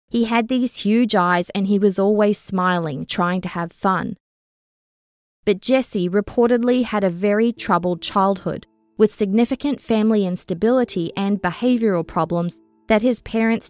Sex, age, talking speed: female, 20-39, 140 wpm